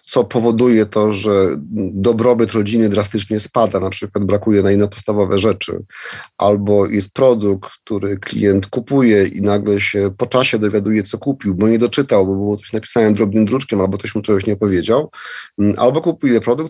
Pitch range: 100-125 Hz